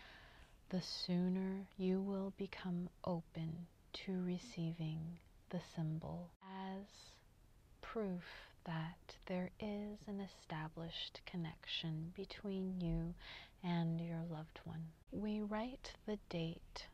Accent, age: American, 30-49